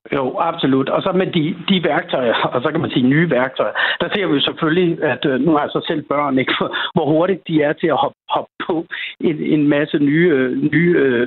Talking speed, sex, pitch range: 225 wpm, male, 145-180 Hz